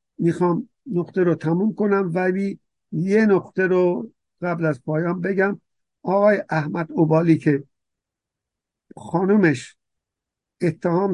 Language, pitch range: Persian, 160-195 Hz